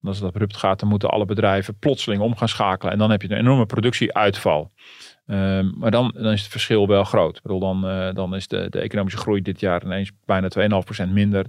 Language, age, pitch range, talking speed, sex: Dutch, 40-59, 100-115 Hz, 235 wpm, male